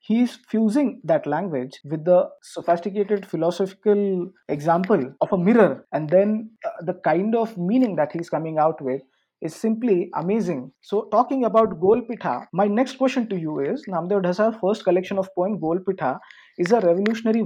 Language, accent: English, Indian